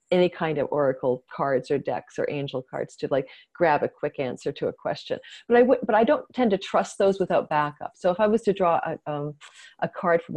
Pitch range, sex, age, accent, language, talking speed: 155-200 Hz, female, 40-59, American, English, 245 wpm